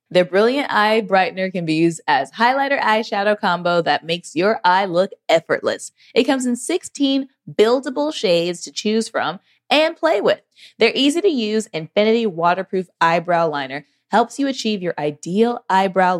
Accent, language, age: American, English, 20-39